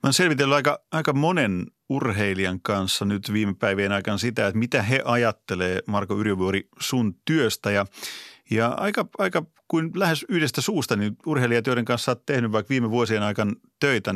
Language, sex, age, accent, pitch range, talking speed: Finnish, male, 30-49, native, 105-140 Hz, 170 wpm